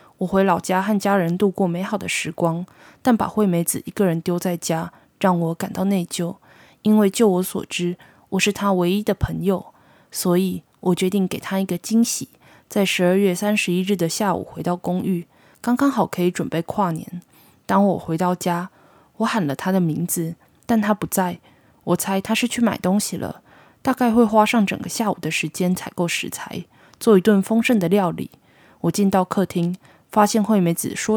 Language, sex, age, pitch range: Chinese, female, 20-39, 175-210 Hz